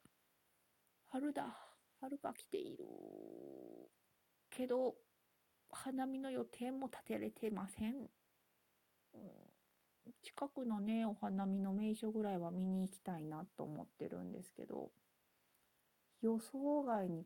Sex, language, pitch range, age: female, Japanese, 185-240 Hz, 40-59